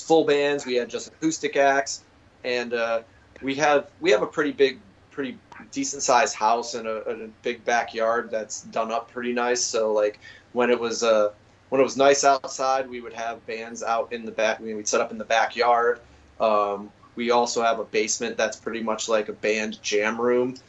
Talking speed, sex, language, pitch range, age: 200 wpm, male, English, 110-130 Hz, 30-49